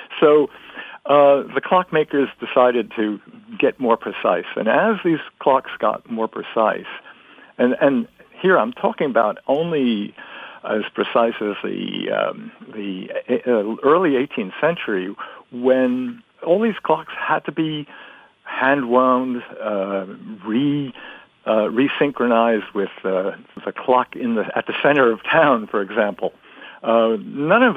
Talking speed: 130 wpm